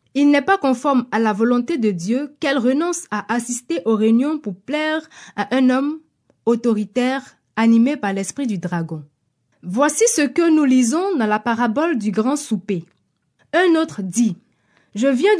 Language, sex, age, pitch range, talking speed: French, female, 20-39, 215-285 Hz, 165 wpm